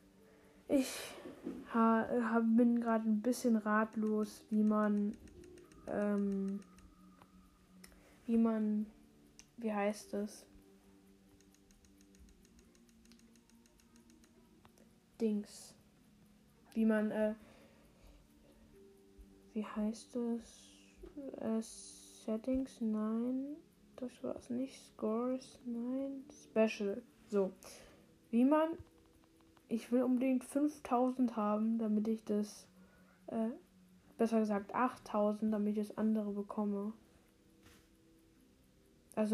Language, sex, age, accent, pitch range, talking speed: German, female, 10-29, German, 150-230 Hz, 80 wpm